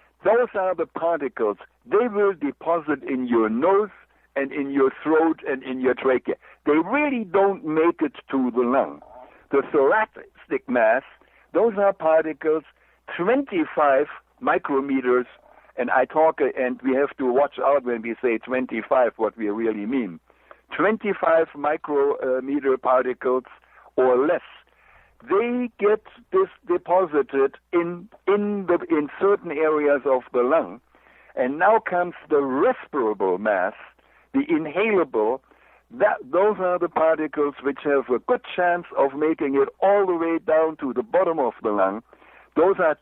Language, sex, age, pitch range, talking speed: English, male, 60-79, 130-195 Hz, 140 wpm